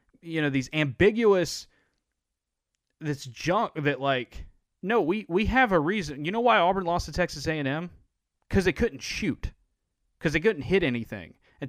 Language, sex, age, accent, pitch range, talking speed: English, male, 30-49, American, 125-170 Hz, 165 wpm